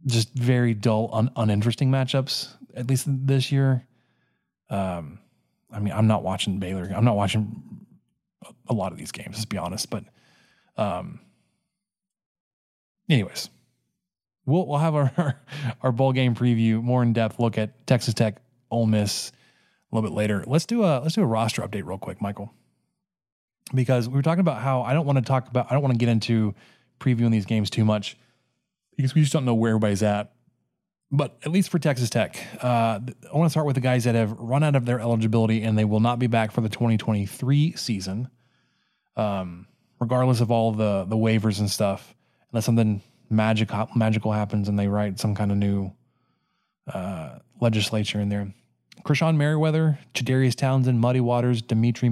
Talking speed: 185 wpm